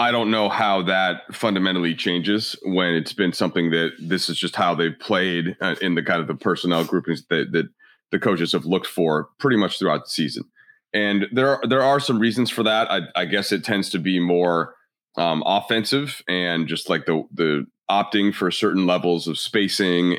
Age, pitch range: 30-49, 90-110 Hz